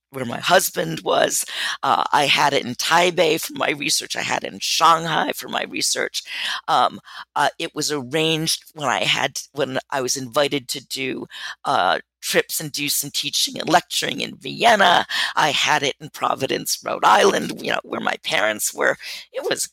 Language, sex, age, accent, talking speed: English, female, 50-69, American, 185 wpm